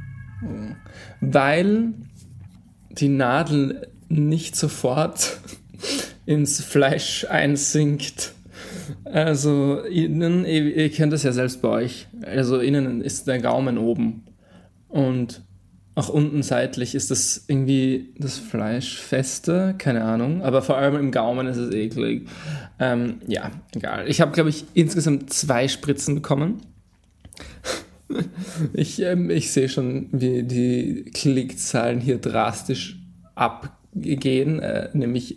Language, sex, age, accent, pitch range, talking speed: German, male, 20-39, German, 125-155 Hz, 110 wpm